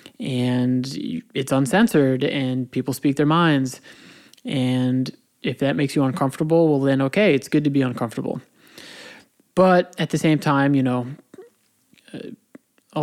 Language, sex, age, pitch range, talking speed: English, male, 20-39, 135-155 Hz, 140 wpm